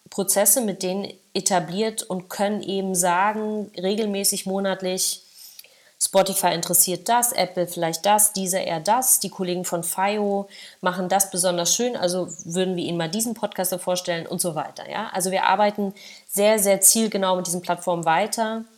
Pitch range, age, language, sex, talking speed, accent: 180-205 Hz, 30-49, German, female, 155 wpm, German